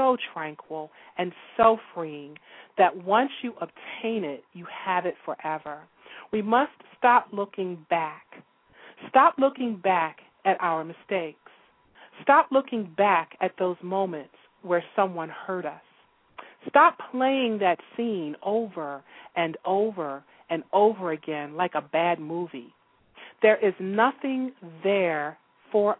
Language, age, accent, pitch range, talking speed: English, 40-59, American, 160-230 Hz, 125 wpm